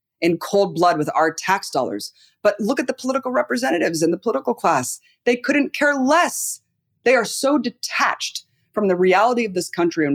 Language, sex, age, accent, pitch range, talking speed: English, female, 20-39, American, 130-200 Hz, 190 wpm